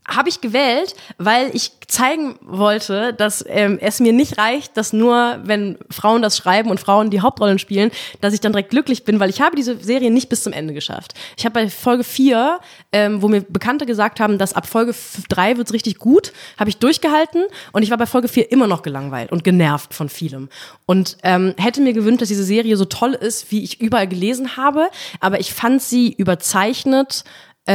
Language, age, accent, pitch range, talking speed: German, 20-39, German, 190-235 Hz, 210 wpm